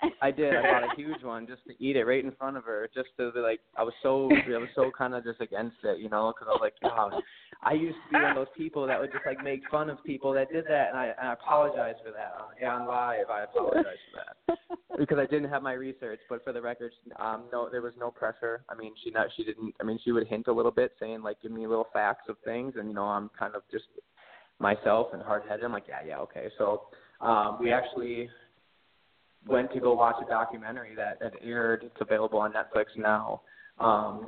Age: 20-39